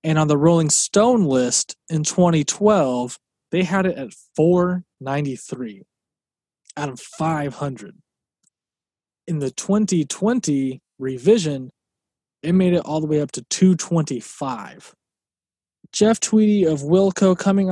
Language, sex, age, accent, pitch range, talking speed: English, male, 20-39, American, 140-170 Hz, 115 wpm